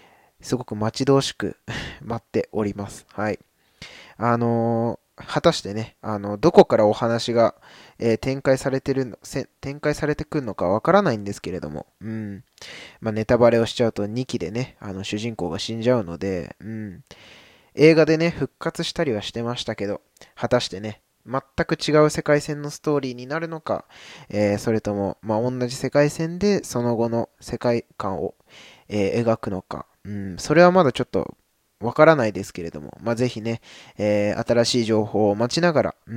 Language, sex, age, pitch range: Japanese, male, 20-39, 105-140 Hz